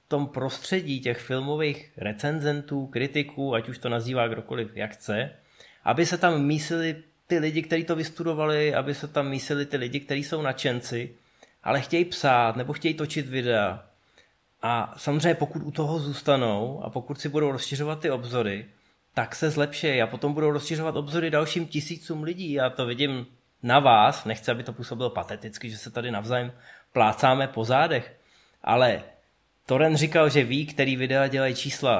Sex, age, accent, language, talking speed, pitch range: male, 20-39, native, Czech, 165 wpm, 125-155 Hz